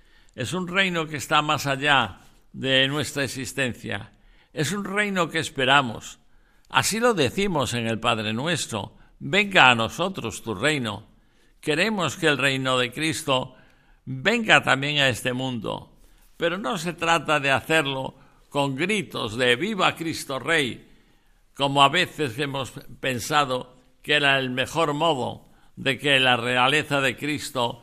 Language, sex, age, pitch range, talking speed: Spanish, male, 60-79, 125-155 Hz, 140 wpm